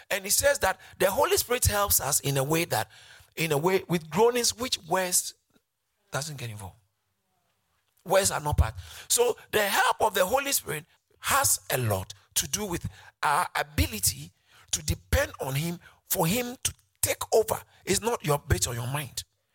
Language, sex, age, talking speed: English, male, 50-69, 180 wpm